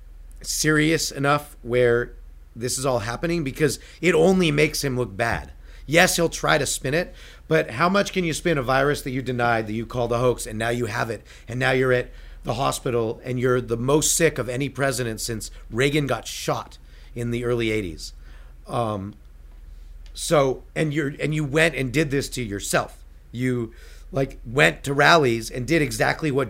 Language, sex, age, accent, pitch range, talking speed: English, male, 40-59, American, 105-150 Hz, 190 wpm